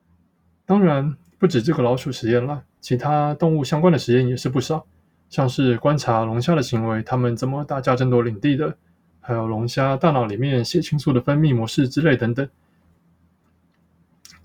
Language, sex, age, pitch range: Chinese, male, 20-39, 90-150 Hz